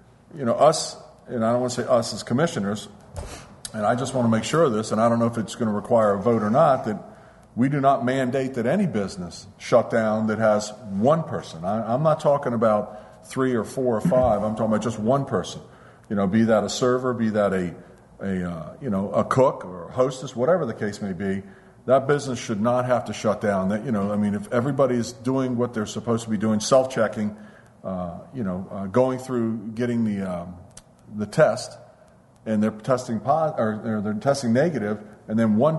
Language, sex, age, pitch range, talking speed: English, male, 50-69, 105-135 Hz, 225 wpm